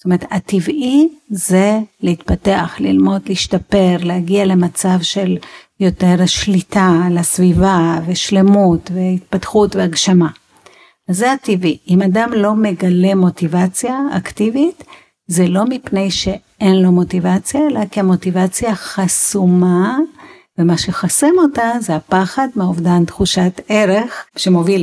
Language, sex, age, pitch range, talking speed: Hebrew, female, 50-69, 175-220 Hz, 100 wpm